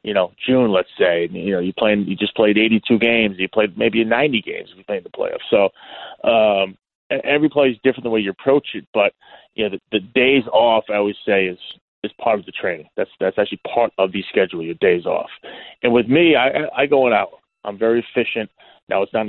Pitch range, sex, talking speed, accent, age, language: 100-120 Hz, male, 230 wpm, American, 30-49, English